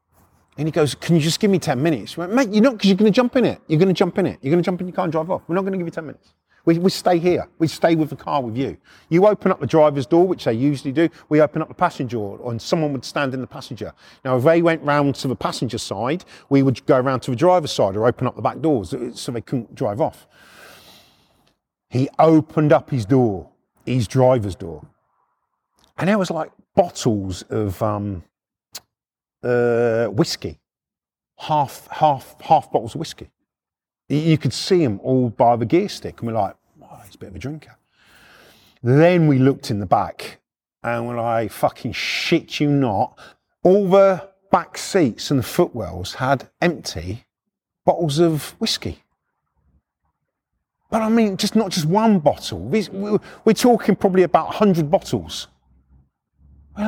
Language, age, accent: English, 40-59, British